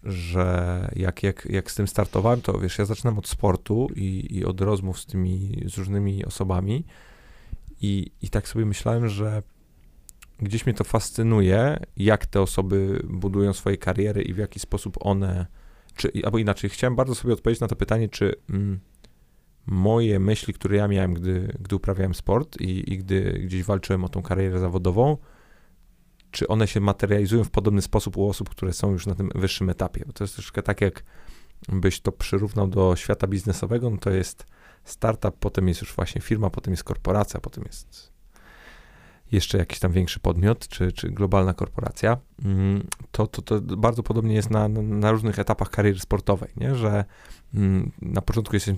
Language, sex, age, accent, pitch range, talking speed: Polish, male, 30-49, native, 95-105 Hz, 170 wpm